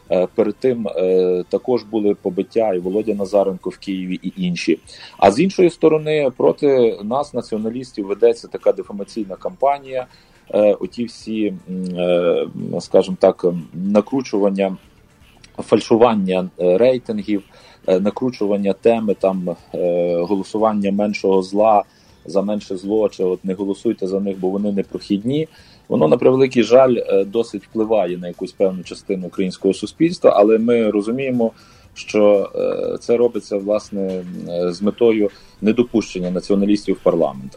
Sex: male